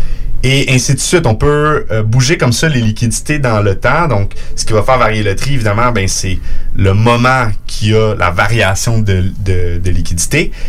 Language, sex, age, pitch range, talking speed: French, male, 30-49, 95-125 Hz, 200 wpm